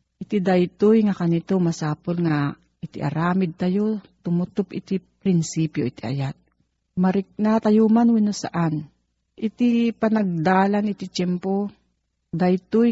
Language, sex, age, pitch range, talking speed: Filipino, female, 50-69, 160-205 Hz, 110 wpm